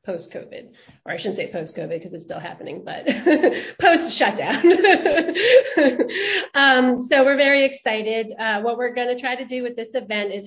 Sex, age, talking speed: female, 30-49, 160 wpm